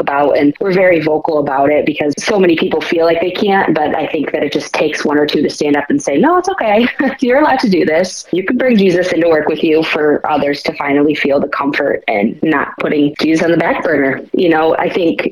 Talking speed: 255 wpm